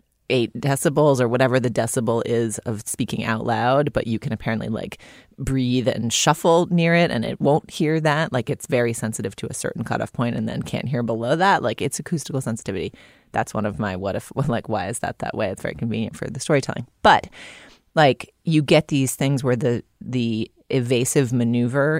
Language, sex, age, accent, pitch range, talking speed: English, female, 30-49, American, 115-150 Hz, 200 wpm